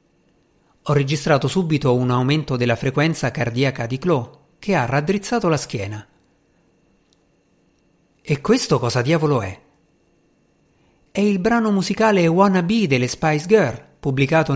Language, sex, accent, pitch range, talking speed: Italian, male, native, 130-180 Hz, 125 wpm